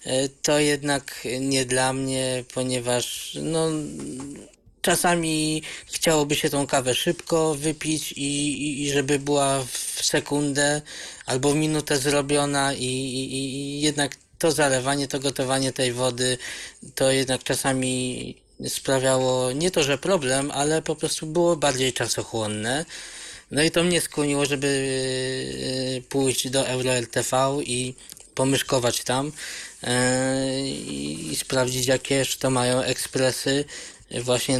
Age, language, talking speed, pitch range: 20-39, Polish, 120 wpm, 125-145 Hz